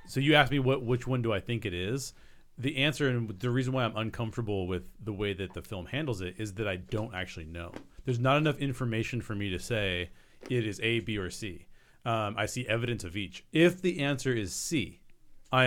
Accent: American